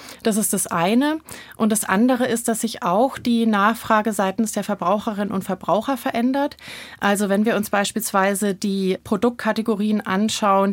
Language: German